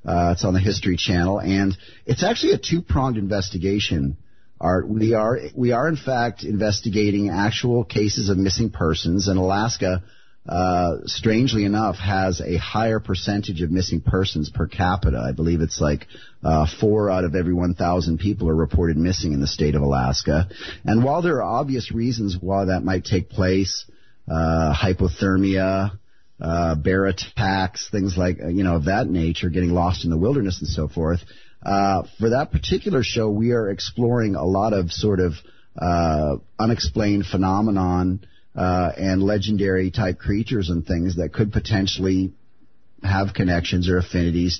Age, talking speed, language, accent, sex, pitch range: 30-49, 160 wpm, English, American, male, 85-105 Hz